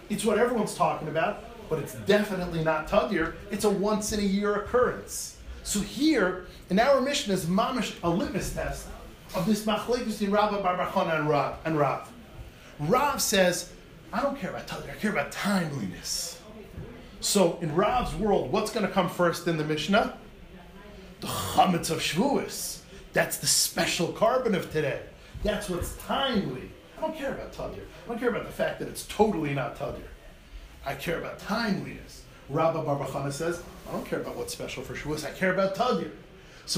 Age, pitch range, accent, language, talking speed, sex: 40-59, 165-220 Hz, American, English, 170 wpm, male